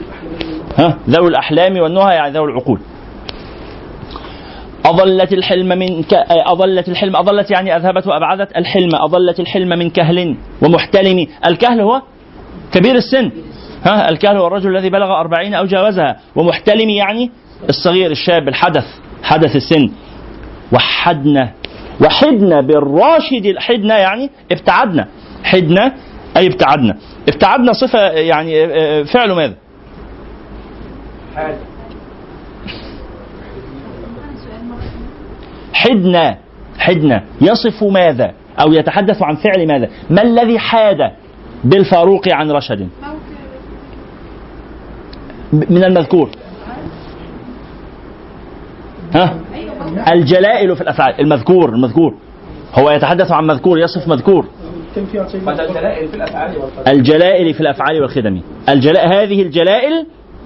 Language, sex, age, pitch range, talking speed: Arabic, male, 40-59, 155-200 Hz, 90 wpm